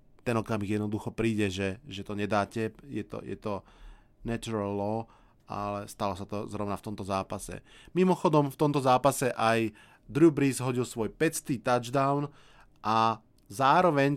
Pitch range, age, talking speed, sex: 110-145 Hz, 20-39, 145 wpm, male